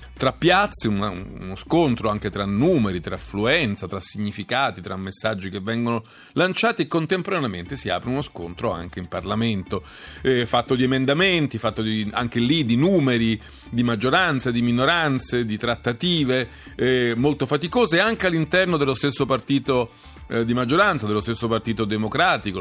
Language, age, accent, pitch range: Italian, 40-59, native, 95-130 Hz